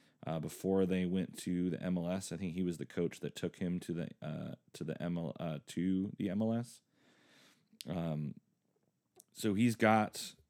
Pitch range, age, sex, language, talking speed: 85-105 Hz, 30-49, male, English, 160 wpm